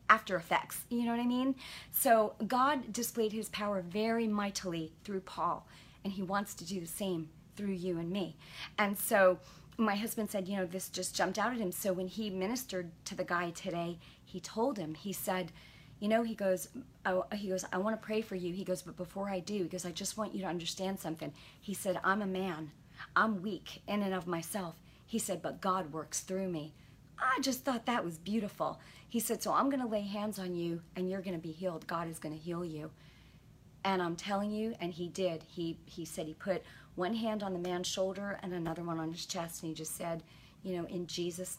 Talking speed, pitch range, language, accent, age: 230 wpm, 170-200 Hz, English, American, 40-59